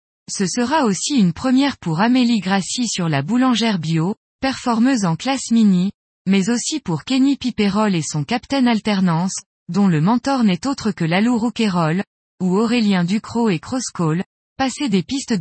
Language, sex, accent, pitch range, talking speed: French, female, French, 180-245 Hz, 160 wpm